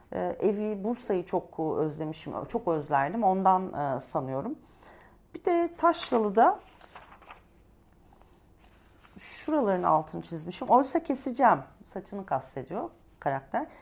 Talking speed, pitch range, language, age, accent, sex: 85 wpm, 170-245 Hz, Turkish, 40-59, native, female